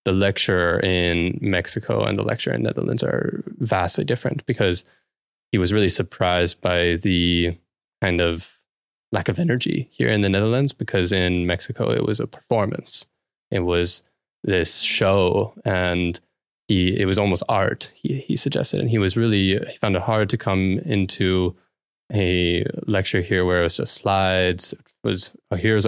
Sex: male